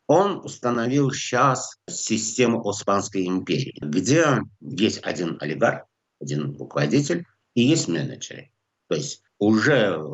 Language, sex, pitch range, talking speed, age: Russian, male, 85-130 Hz, 110 wpm, 60-79